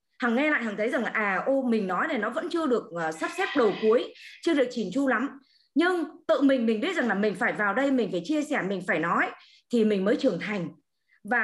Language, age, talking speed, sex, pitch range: Vietnamese, 20-39, 260 wpm, female, 225-310 Hz